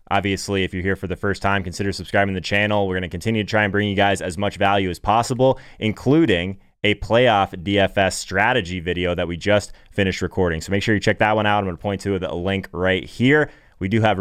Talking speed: 250 wpm